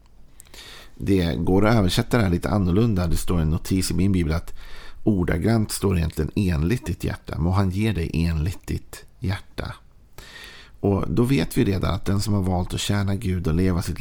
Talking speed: 195 wpm